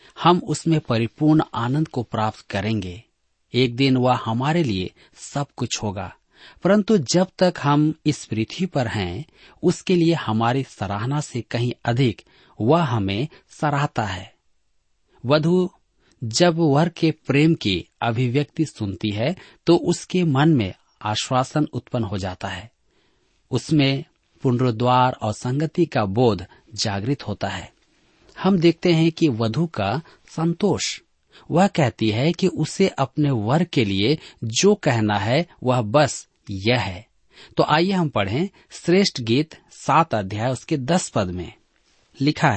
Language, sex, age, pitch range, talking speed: Hindi, male, 40-59, 110-165 Hz, 135 wpm